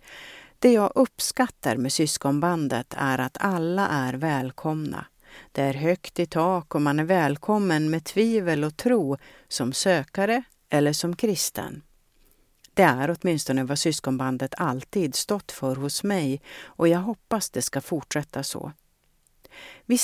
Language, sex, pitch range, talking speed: Swedish, female, 140-180 Hz, 140 wpm